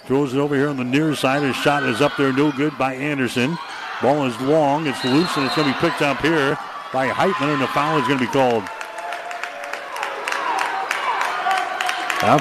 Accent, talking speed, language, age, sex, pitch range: American, 190 wpm, English, 60-79, male, 130-150 Hz